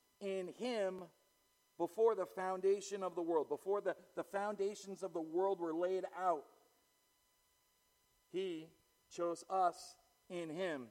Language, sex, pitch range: English, male, 130-190 Hz